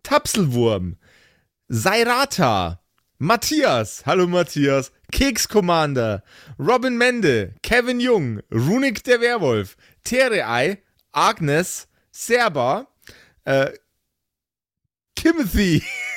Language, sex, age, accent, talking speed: German, male, 30-49, German, 65 wpm